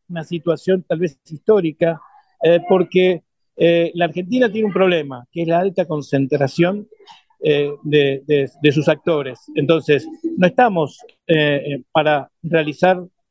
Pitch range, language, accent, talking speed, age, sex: 155-195 Hz, Spanish, Argentinian, 135 wpm, 50-69, male